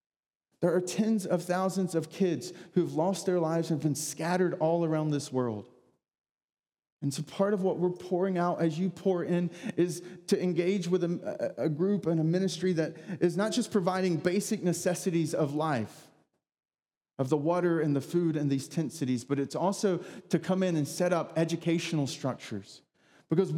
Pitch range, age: 155-195 Hz, 30-49